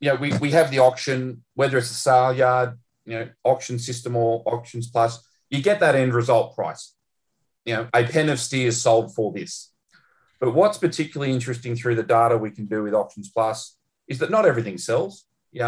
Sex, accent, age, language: male, Australian, 40-59, English